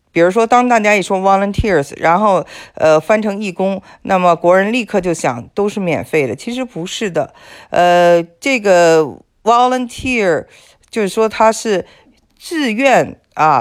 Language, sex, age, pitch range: Chinese, female, 50-69, 160-220 Hz